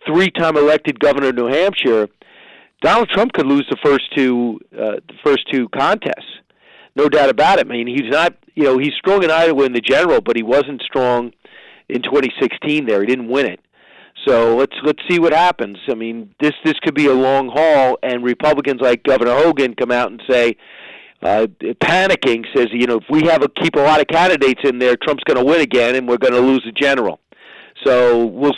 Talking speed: 210 wpm